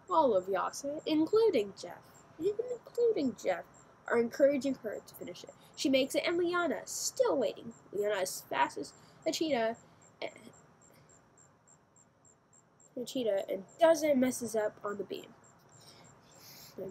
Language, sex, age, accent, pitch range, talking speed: English, female, 10-29, American, 190-300 Hz, 140 wpm